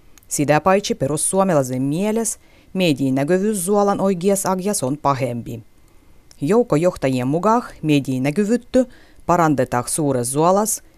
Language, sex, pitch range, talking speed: Finnish, female, 130-195 Hz, 95 wpm